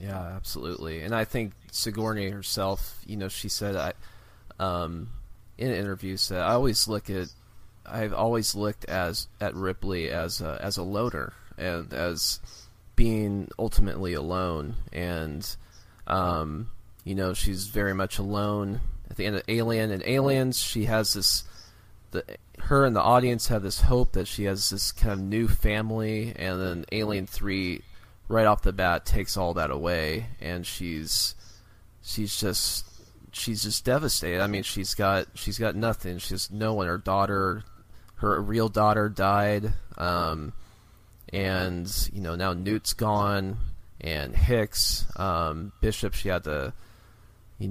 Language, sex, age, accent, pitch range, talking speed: English, male, 20-39, American, 90-110 Hz, 150 wpm